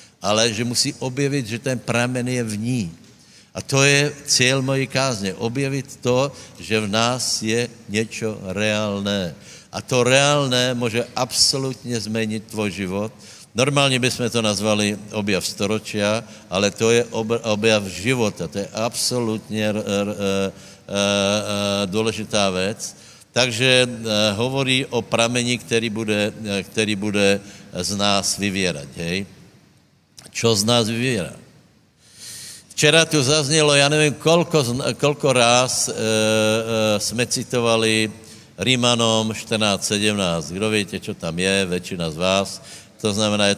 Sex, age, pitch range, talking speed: male, 60-79, 105-125 Hz, 120 wpm